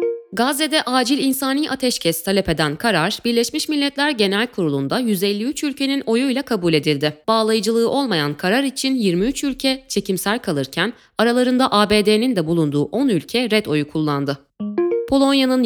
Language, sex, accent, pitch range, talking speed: Turkish, female, native, 175-265 Hz, 130 wpm